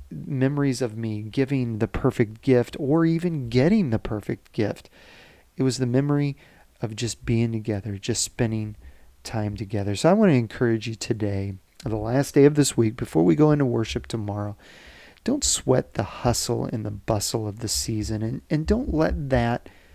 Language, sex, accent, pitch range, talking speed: English, male, American, 105-130 Hz, 180 wpm